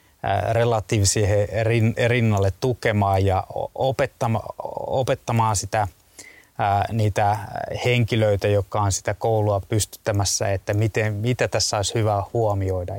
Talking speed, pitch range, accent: 90 wpm, 100-120 Hz, native